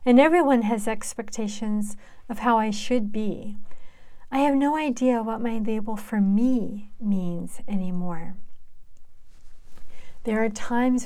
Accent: American